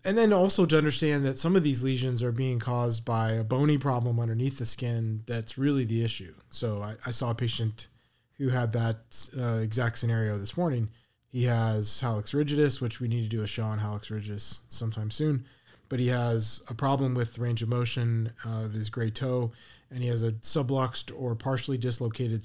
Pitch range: 115-135 Hz